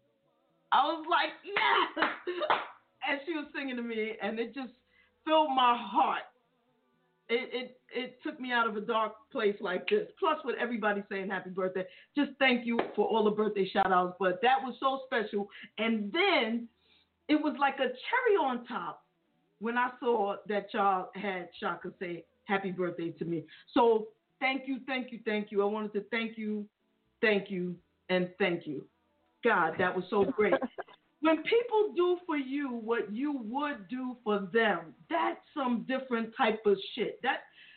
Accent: American